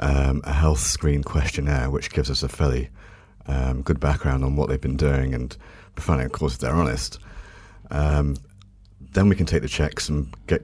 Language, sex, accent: English, male, British